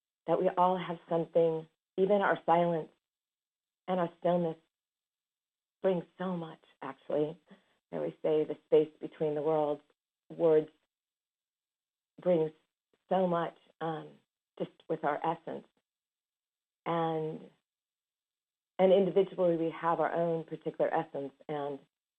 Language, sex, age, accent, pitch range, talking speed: English, female, 50-69, American, 150-175 Hz, 115 wpm